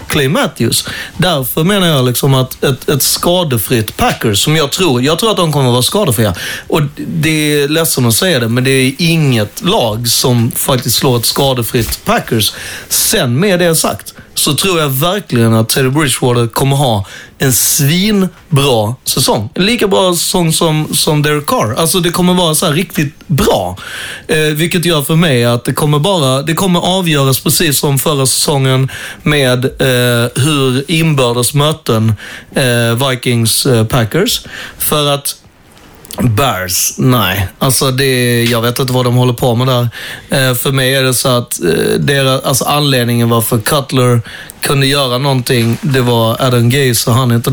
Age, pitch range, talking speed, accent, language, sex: 30-49, 120-155 Hz, 165 wpm, native, Swedish, male